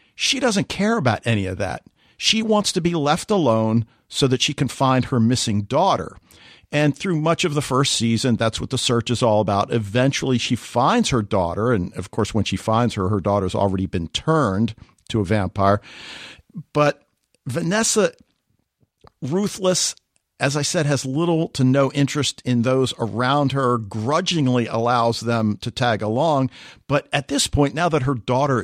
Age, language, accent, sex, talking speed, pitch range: 50-69, English, American, male, 175 wpm, 115-150 Hz